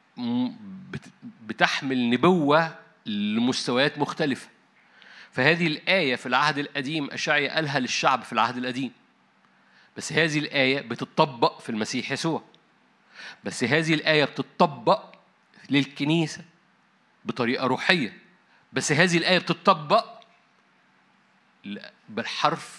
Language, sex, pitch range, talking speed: Arabic, male, 130-180 Hz, 90 wpm